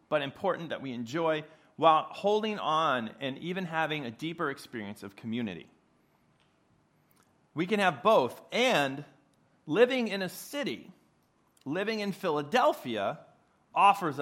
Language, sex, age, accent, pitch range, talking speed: English, male, 40-59, American, 120-165 Hz, 120 wpm